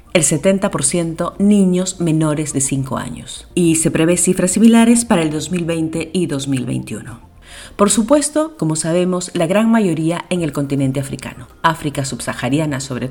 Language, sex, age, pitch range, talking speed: Spanish, female, 40-59, 155-200 Hz, 140 wpm